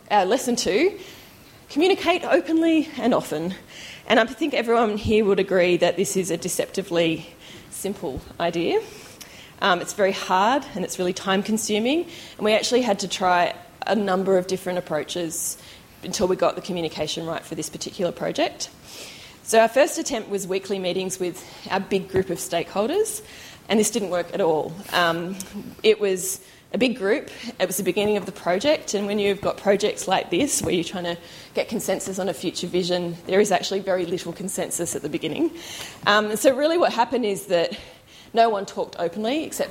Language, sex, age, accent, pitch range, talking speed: English, female, 20-39, Australian, 180-225 Hz, 180 wpm